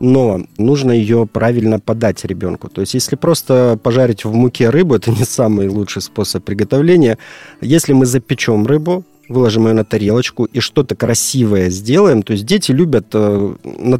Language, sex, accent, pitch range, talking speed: Russian, male, native, 105-130 Hz, 160 wpm